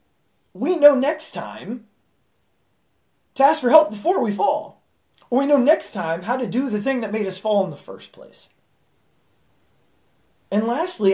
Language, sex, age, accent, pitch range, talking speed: English, male, 30-49, American, 195-260 Hz, 165 wpm